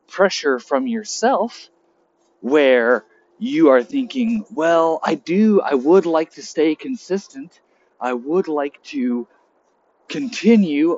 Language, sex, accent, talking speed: English, male, American, 115 wpm